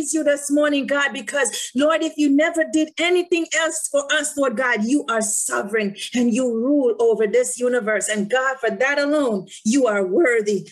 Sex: female